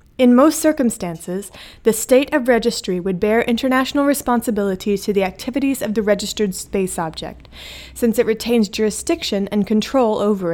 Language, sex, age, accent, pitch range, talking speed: English, female, 20-39, American, 195-245 Hz, 150 wpm